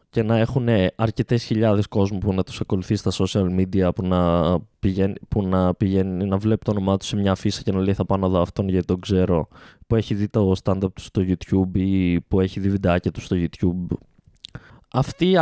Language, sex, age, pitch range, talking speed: Greek, male, 20-39, 100-135 Hz, 215 wpm